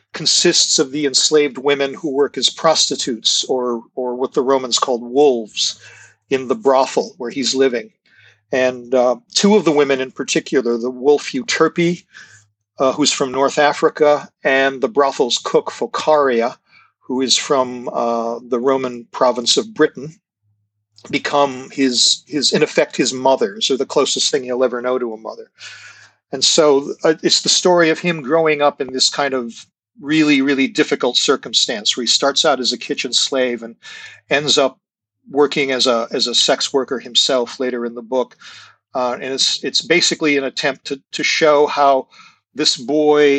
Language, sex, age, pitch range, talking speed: English, male, 40-59, 125-150 Hz, 170 wpm